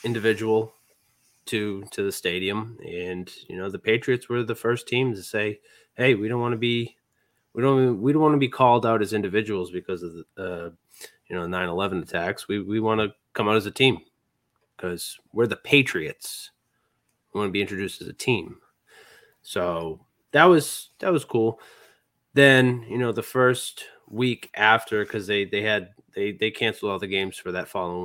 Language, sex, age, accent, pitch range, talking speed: English, male, 20-39, American, 100-130 Hz, 190 wpm